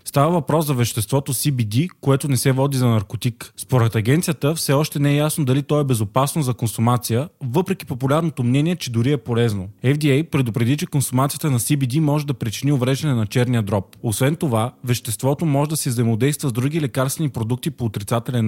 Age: 20-39